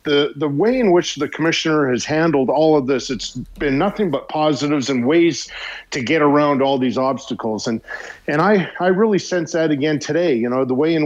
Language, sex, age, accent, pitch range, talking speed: English, male, 50-69, American, 135-170 Hz, 210 wpm